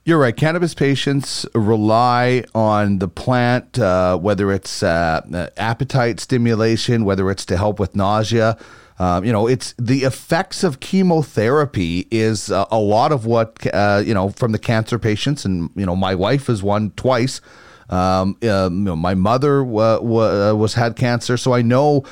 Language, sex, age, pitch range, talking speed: English, male, 30-49, 105-130 Hz, 160 wpm